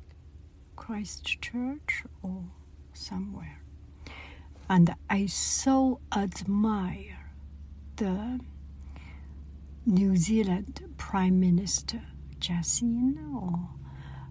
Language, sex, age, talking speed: English, female, 60-79, 70 wpm